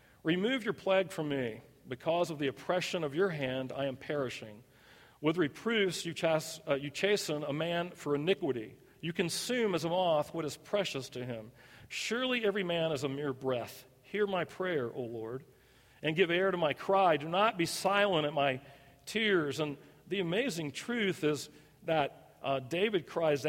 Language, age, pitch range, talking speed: English, 40-59, 140-185 Hz, 175 wpm